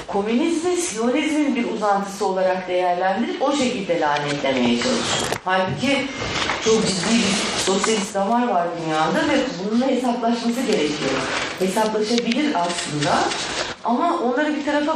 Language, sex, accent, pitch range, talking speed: Turkish, female, native, 185-250 Hz, 110 wpm